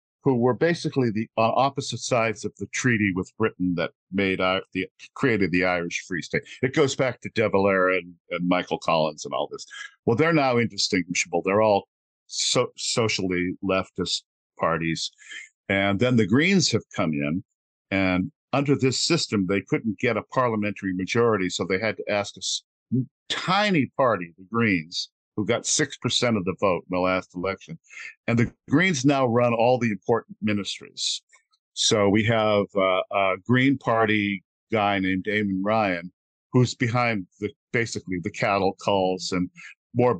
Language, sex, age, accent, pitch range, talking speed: English, male, 50-69, American, 95-125 Hz, 165 wpm